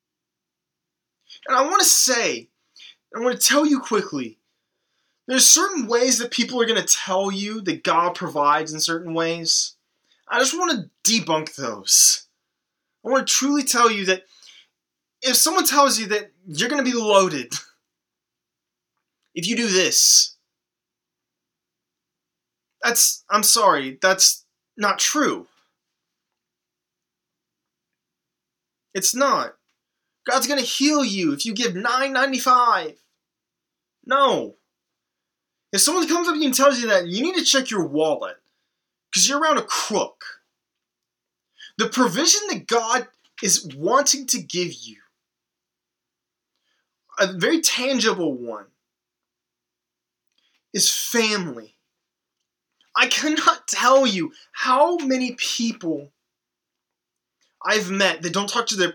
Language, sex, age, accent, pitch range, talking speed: English, male, 20-39, American, 170-270 Hz, 125 wpm